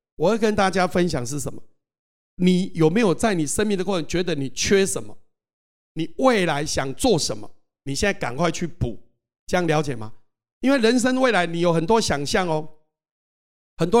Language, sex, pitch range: Chinese, male, 150-200 Hz